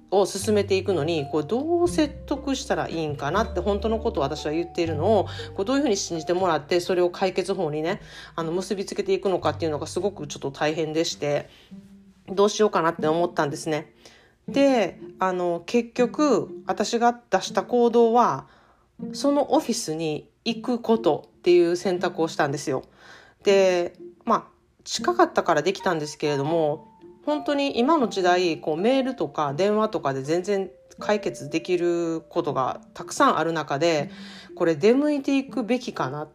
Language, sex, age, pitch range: Japanese, female, 40-59, 165-235 Hz